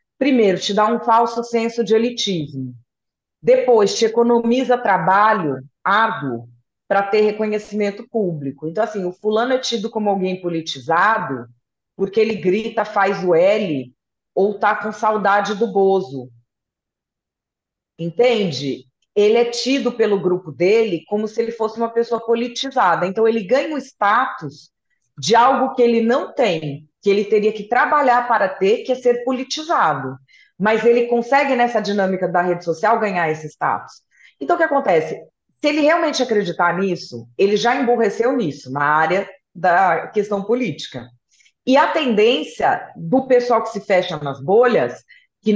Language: Portuguese